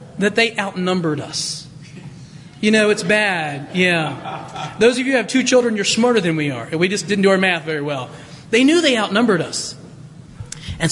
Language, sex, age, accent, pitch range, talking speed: English, male, 30-49, American, 155-215 Hz, 200 wpm